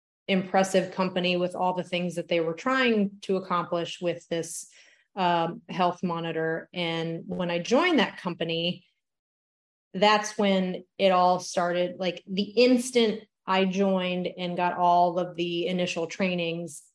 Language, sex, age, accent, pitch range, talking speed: English, female, 30-49, American, 175-195 Hz, 140 wpm